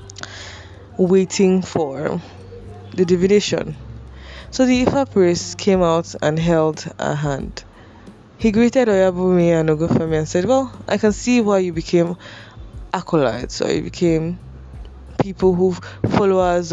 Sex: female